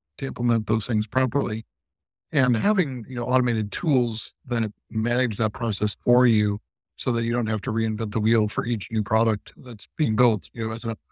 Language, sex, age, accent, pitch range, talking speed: English, male, 60-79, American, 105-120 Hz, 190 wpm